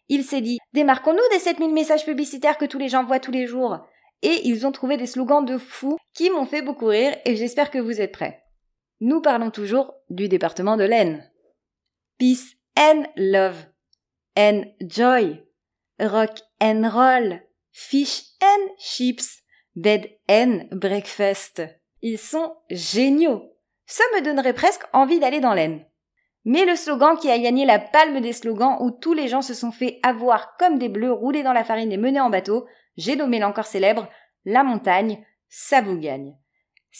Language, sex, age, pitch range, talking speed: French, female, 30-49, 210-300 Hz, 175 wpm